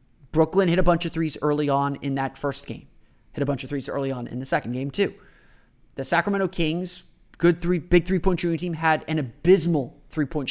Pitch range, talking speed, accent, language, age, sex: 140-175 Hz, 210 wpm, American, English, 30-49, male